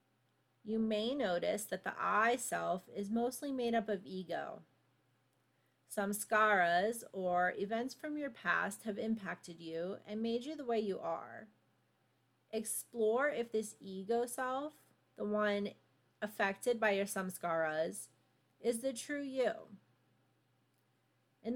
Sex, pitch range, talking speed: female, 135-220 Hz, 120 wpm